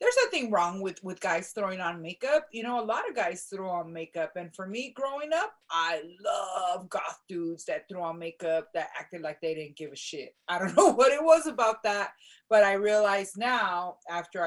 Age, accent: 30-49, American